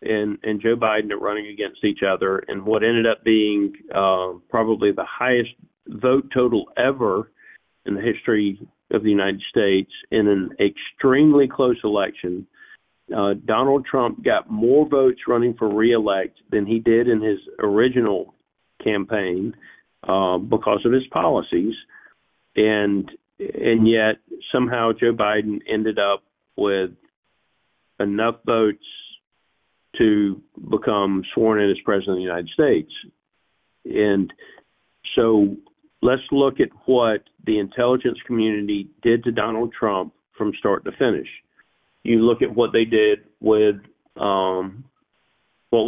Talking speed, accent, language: 130 wpm, American, English